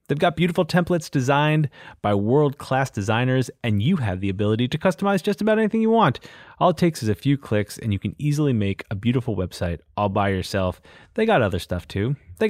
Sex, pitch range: male, 100-155 Hz